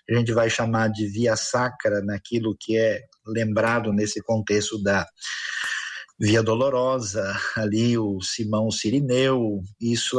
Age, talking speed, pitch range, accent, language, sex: 50-69, 125 wpm, 110-135 Hz, Brazilian, Portuguese, male